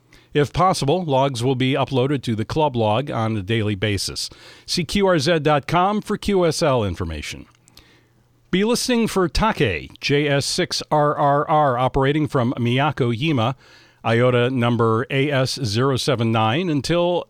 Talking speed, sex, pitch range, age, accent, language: 110 wpm, male, 120-160 Hz, 50-69, American, English